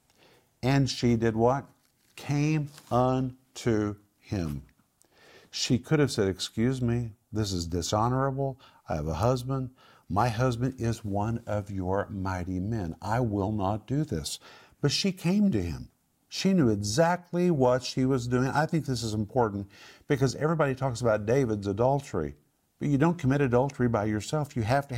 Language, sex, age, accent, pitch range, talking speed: English, male, 50-69, American, 105-135 Hz, 160 wpm